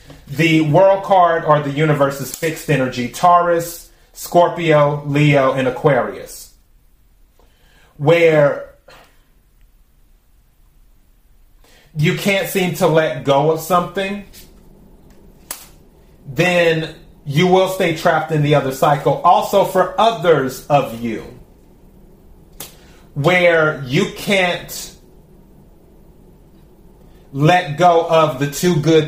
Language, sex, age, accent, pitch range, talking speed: English, male, 30-49, American, 145-175 Hz, 95 wpm